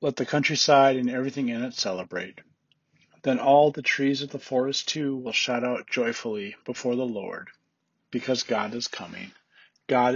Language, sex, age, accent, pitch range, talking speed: English, male, 40-59, American, 120-140 Hz, 165 wpm